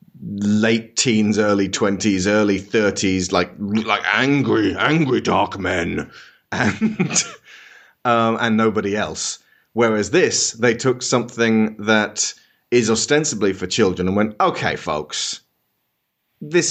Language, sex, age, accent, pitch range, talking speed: English, male, 30-49, British, 90-125 Hz, 115 wpm